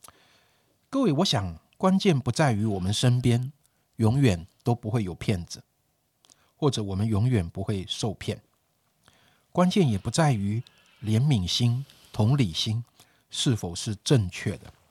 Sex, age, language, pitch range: male, 50-69, Chinese, 110-150 Hz